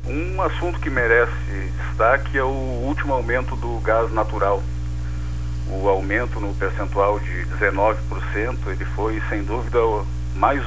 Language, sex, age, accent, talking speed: Portuguese, male, 50-69, Brazilian, 125 wpm